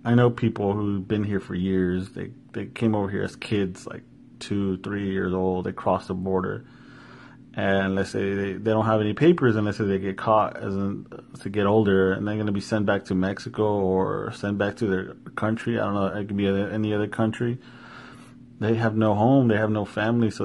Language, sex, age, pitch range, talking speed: English, male, 30-49, 100-120 Hz, 225 wpm